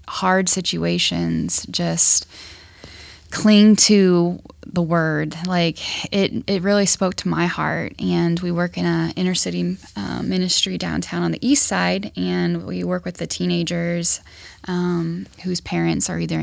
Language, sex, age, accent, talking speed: English, female, 10-29, American, 145 wpm